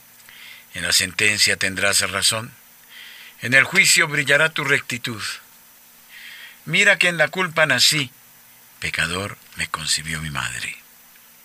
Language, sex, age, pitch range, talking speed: Spanish, male, 50-69, 95-145 Hz, 115 wpm